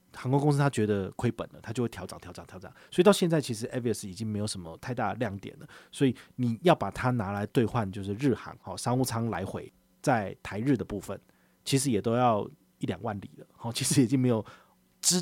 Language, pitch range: Chinese, 100-135 Hz